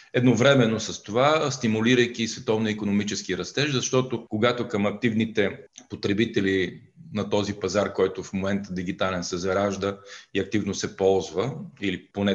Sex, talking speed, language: male, 125 wpm, Bulgarian